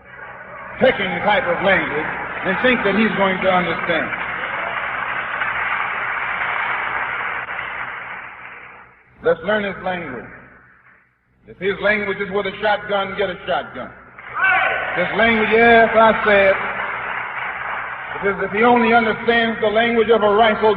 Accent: American